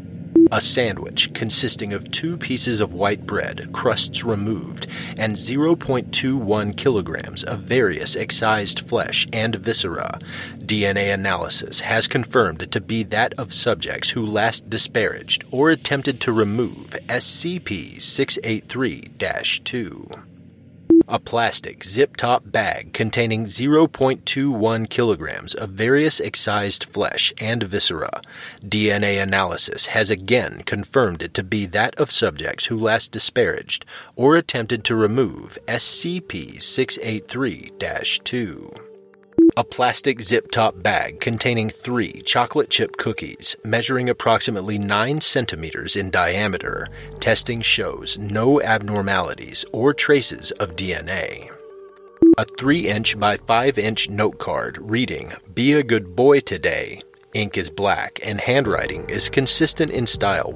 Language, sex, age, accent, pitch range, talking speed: English, male, 30-49, American, 105-140 Hz, 110 wpm